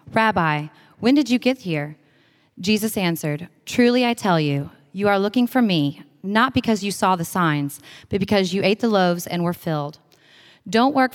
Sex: female